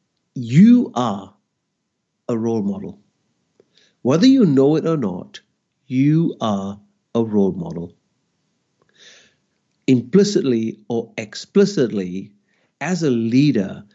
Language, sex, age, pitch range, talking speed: English, male, 60-79, 130-205 Hz, 95 wpm